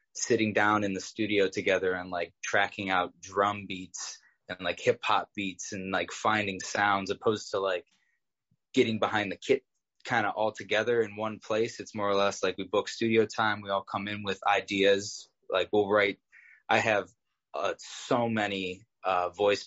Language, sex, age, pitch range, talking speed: English, male, 20-39, 95-110 Hz, 185 wpm